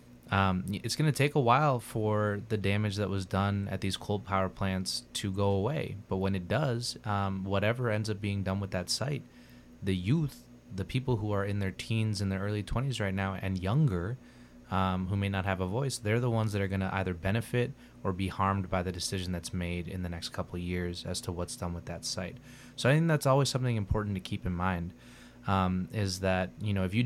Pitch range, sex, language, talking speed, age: 95-110 Hz, male, English, 235 wpm, 20-39